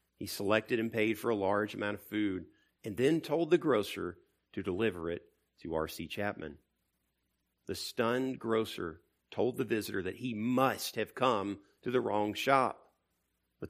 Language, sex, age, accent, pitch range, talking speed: English, male, 50-69, American, 90-120 Hz, 160 wpm